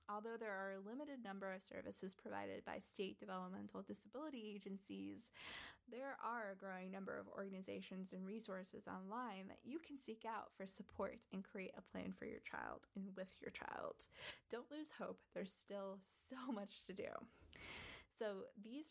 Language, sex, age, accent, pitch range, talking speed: English, female, 20-39, American, 190-225 Hz, 170 wpm